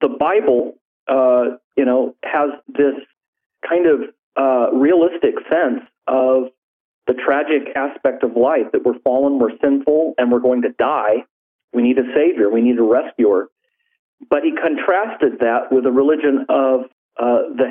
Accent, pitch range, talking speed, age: American, 125-150 Hz, 155 wpm, 40-59